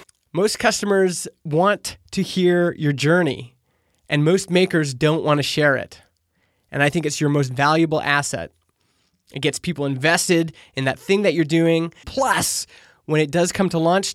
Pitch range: 140-170 Hz